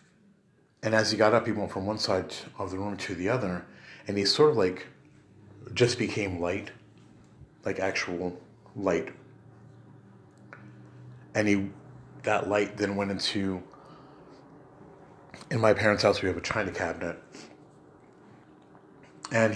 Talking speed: 135 wpm